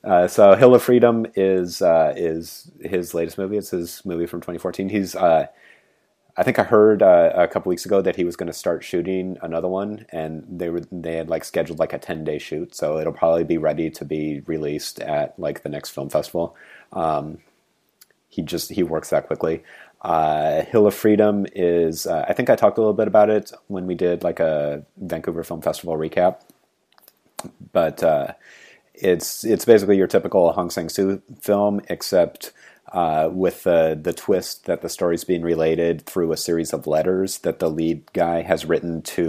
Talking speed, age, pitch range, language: 190 wpm, 30-49, 80-95 Hz, English